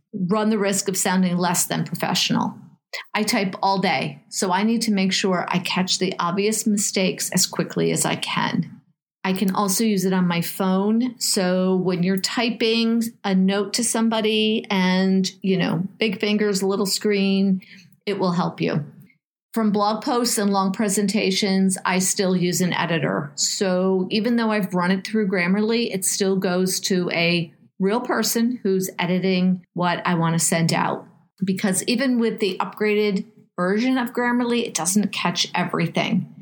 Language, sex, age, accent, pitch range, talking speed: English, female, 40-59, American, 180-210 Hz, 170 wpm